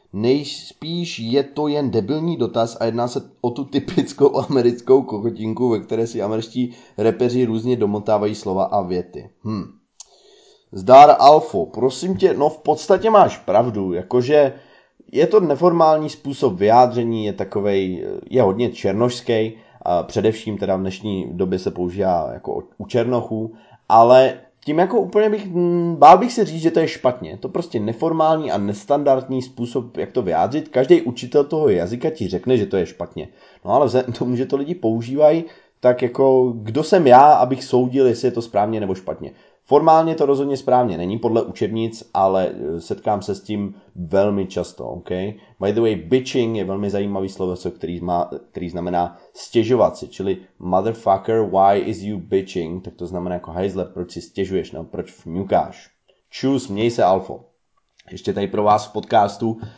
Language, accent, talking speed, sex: Czech, native, 165 wpm, male